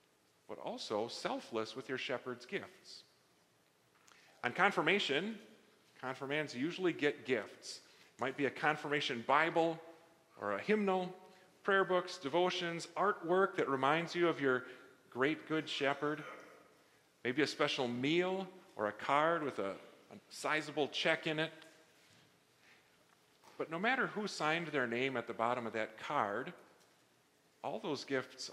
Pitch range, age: 130-175 Hz, 40-59